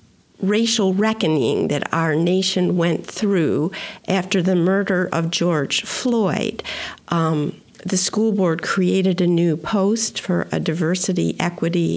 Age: 50-69